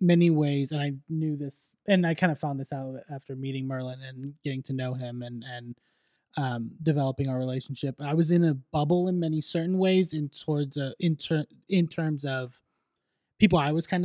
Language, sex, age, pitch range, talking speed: English, male, 20-39, 135-160 Hz, 205 wpm